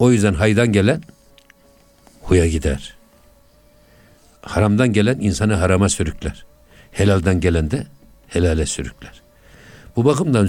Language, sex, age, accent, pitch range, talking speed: Turkish, male, 60-79, native, 85-110 Hz, 105 wpm